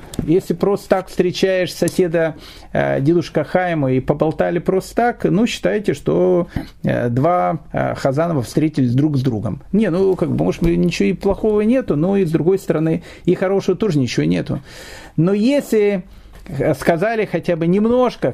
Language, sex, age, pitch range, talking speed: Russian, male, 40-59, 135-190 Hz, 155 wpm